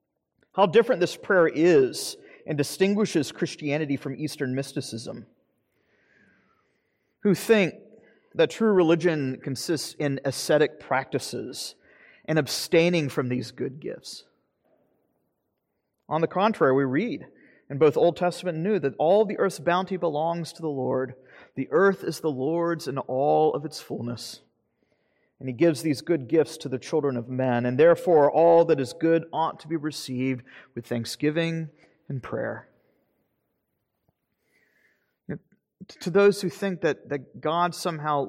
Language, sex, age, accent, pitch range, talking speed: English, male, 40-59, American, 135-175 Hz, 140 wpm